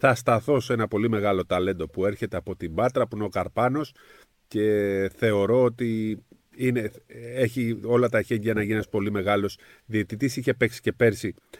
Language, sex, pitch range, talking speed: Greek, male, 105-150 Hz, 175 wpm